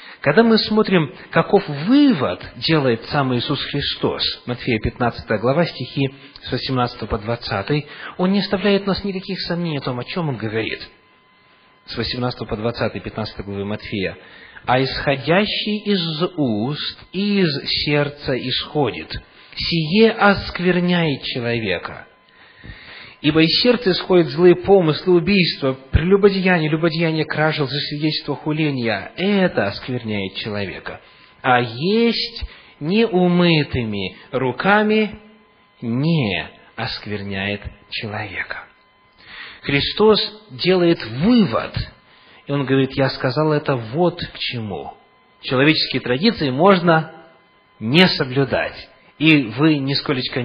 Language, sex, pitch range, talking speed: English, male, 125-180 Hz, 105 wpm